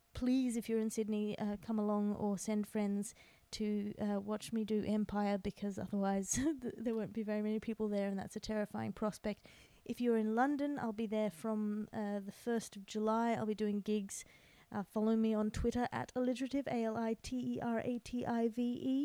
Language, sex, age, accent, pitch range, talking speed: English, female, 30-49, Australian, 200-230 Hz, 175 wpm